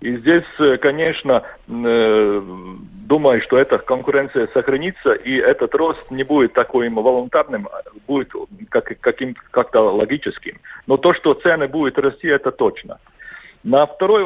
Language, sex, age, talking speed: Russian, male, 50-69, 120 wpm